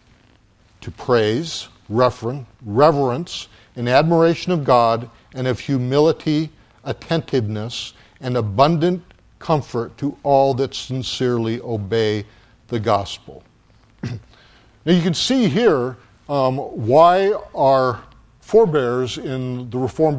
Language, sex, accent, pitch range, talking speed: English, male, American, 120-165 Hz, 100 wpm